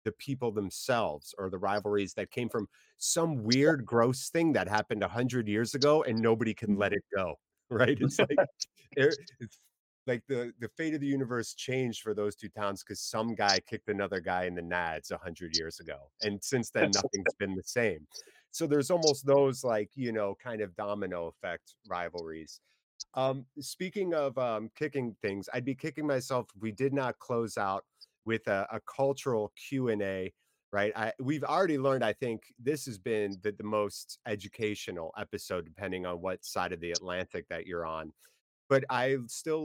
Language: English